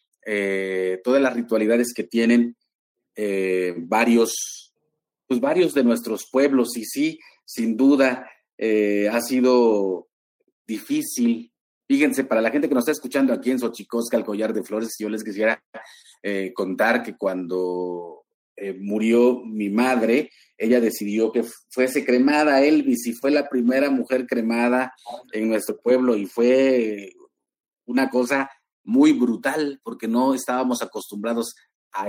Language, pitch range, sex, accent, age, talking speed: Spanish, 115-155 Hz, male, Mexican, 40-59, 135 wpm